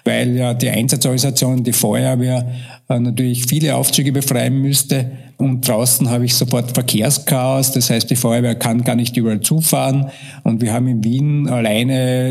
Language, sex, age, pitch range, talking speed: German, male, 50-69, 120-140 Hz, 155 wpm